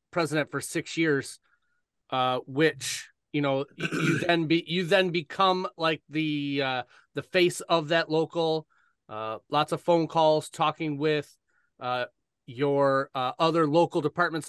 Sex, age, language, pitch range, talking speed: male, 30-49, English, 140-170 Hz, 145 wpm